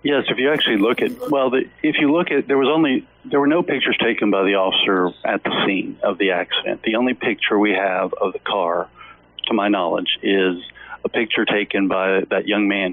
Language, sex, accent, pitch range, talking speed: English, male, American, 95-110 Hz, 225 wpm